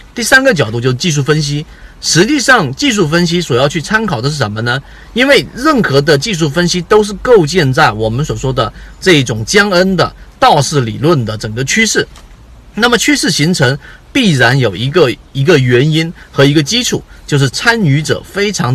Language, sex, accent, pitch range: Chinese, male, native, 125-180 Hz